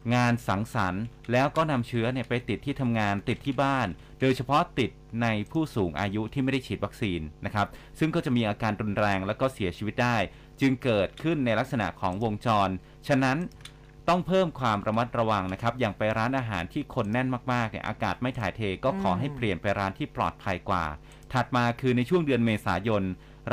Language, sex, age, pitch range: Thai, male, 30-49, 100-130 Hz